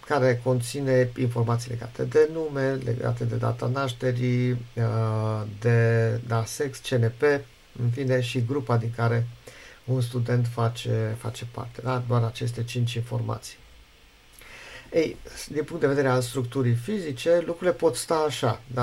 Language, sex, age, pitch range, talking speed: Romanian, male, 50-69, 120-135 Hz, 130 wpm